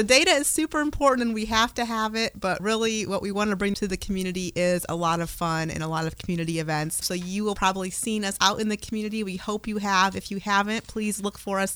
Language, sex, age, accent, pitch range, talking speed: English, female, 30-49, American, 180-210 Hz, 270 wpm